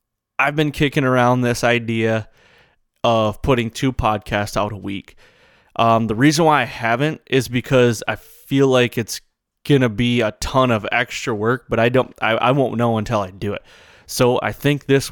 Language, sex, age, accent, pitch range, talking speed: English, male, 20-39, American, 110-130 Hz, 190 wpm